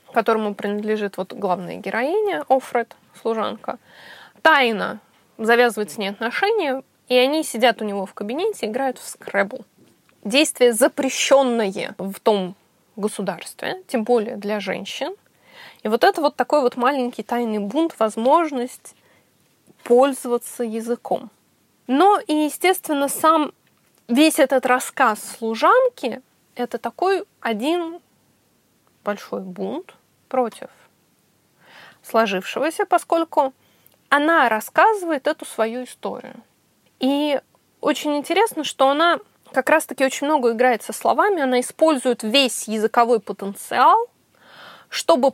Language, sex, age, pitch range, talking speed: Russian, female, 20-39, 225-300 Hz, 110 wpm